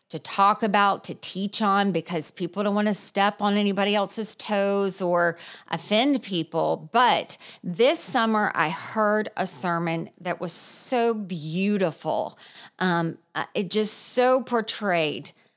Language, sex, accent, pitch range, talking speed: English, female, American, 165-200 Hz, 135 wpm